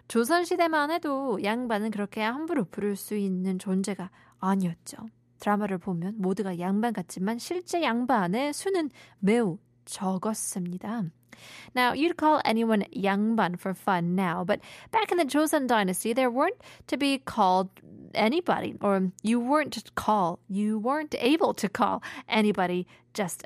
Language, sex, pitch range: Korean, female, 185-255 Hz